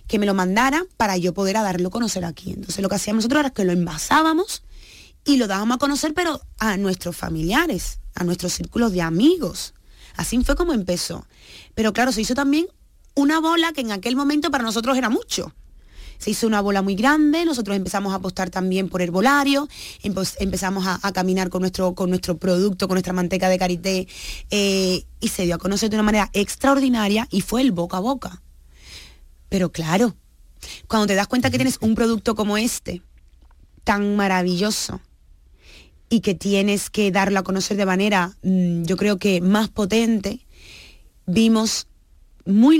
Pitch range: 180-225 Hz